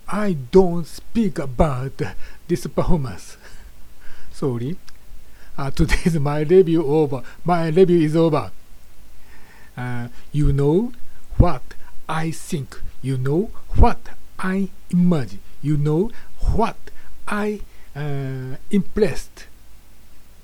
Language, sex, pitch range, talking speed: English, male, 125-180 Hz, 100 wpm